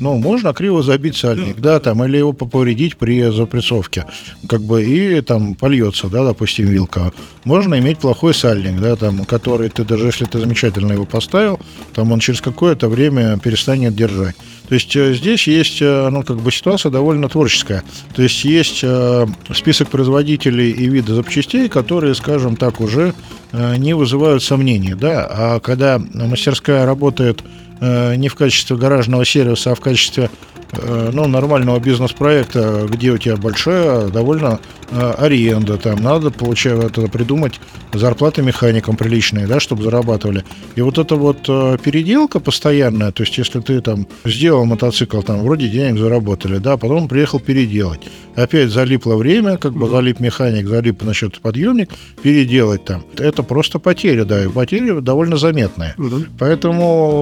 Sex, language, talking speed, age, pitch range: male, Russian, 150 wpm, 50-69, 115-145 Hz